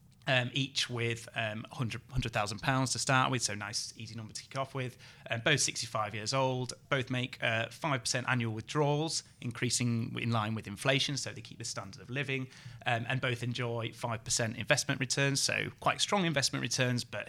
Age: 30-49